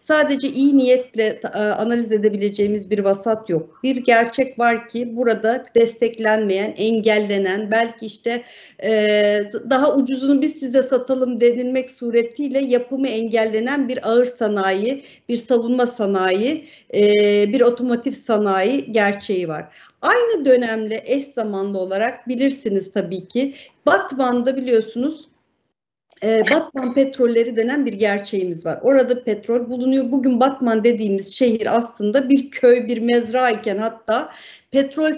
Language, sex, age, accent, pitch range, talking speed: Turkish, female, 50-69, native, 220-275 Hz, 115 wpm